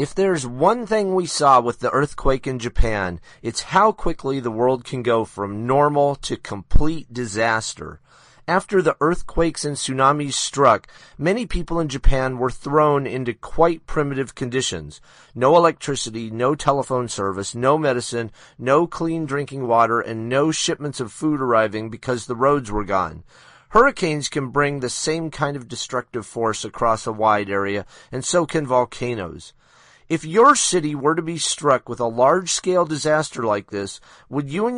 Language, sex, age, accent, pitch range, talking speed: English, male, 40-59, American, 115-155 Hz, 160 wpm